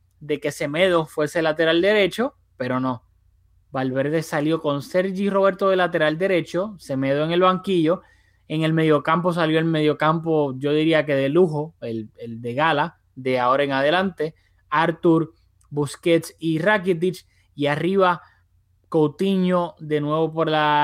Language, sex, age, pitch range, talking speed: Spanish, male, 20-39, 145-180 Hz, 145 wpm